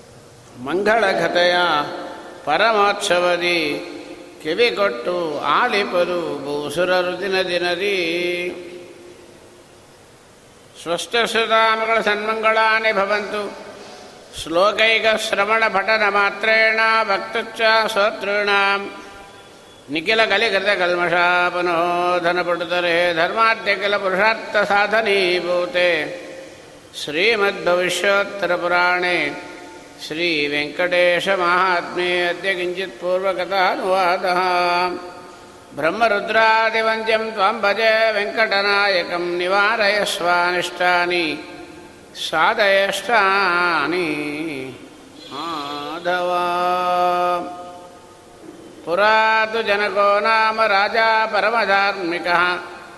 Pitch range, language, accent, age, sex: 175-205 Hz, Kannada, native, 60-79, male